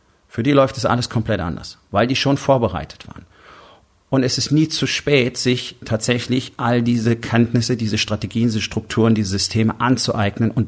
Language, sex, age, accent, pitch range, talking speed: German, male, 40-59, German, 105-125 Hz, 175 wpm